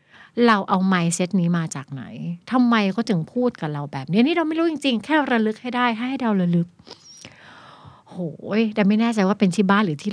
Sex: female